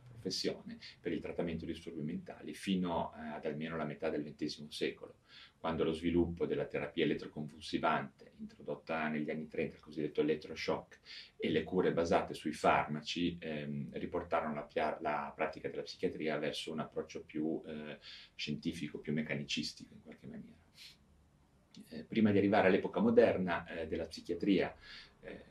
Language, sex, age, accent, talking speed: Italian, male, 30-49, native, 145 wpm